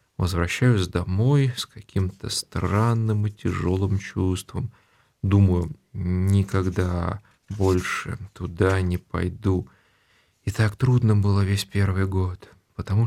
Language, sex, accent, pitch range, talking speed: Russian, male, native, 95-120 Hz, 100 wpm